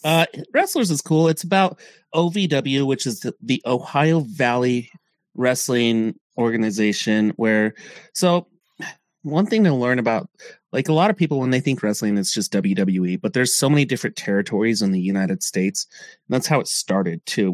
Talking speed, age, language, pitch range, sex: 170 wpm, 30-49, English, 105-145 Hz, male